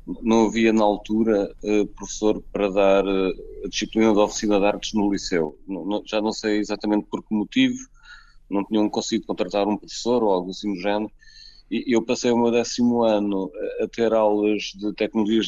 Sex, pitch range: male, 105-130 Hz